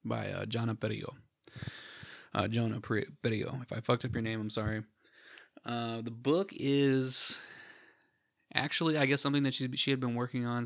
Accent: American